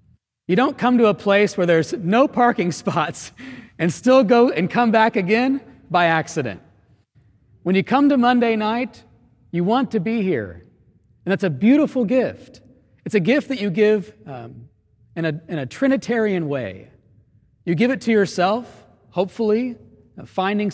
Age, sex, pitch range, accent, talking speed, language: 40-59, male, 150-225 Hz, American, 160 wpm, English